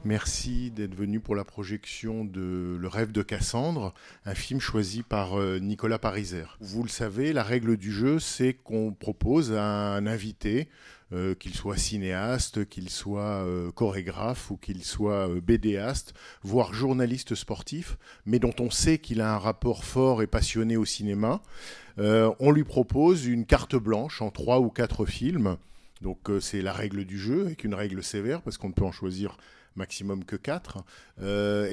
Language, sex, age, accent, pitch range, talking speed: French, male, 50-69, French, 105-125 Hz, 175 wpm